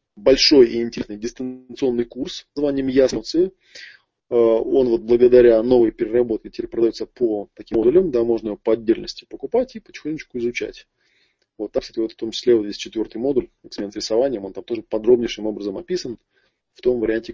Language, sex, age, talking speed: Russian, male, 20-39, 165 wpm